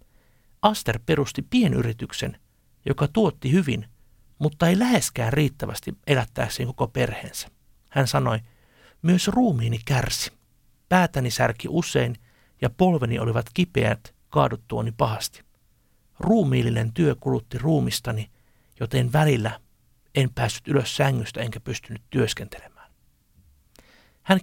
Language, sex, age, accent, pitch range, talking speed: Finnish, male, 60-79, native, 115-155 Hz, 105 wpm